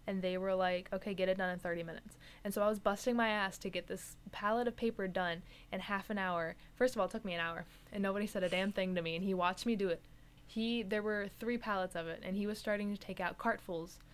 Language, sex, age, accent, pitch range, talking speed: English, female, 10-29, American, 175-215 Hz, 280 wpm